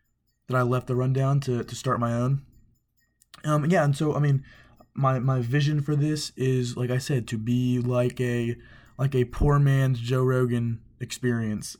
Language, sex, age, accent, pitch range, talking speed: English, male, 20-39, American, 120-130 Hz, 185 wpm